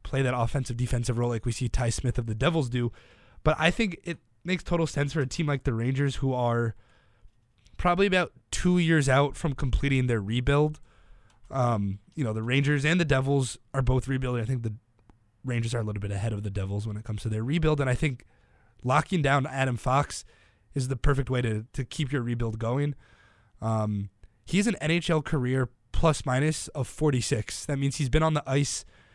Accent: American